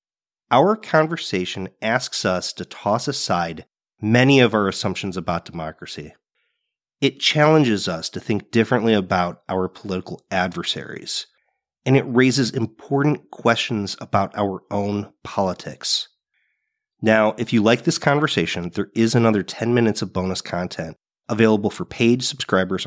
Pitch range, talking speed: 100-135 Hz, 130 wpm